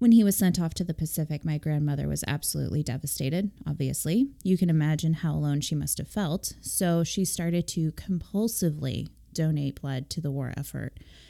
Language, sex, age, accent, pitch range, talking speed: English, female, 20-39, American, 150-185 Hz, 180 wpm